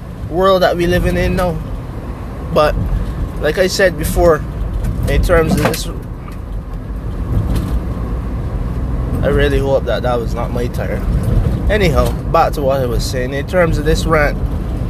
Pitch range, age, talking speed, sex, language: 100-150 Hz, 20-39, 145 wpm, male, English